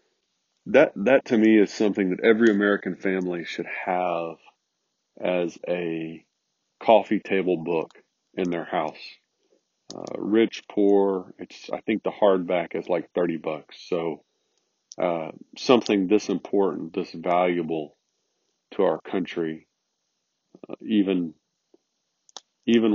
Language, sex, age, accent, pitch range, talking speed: English, male, 40-59, American, 85-100 Hz, 120 wpm